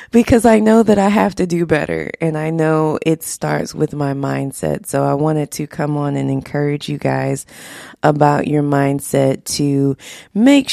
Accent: American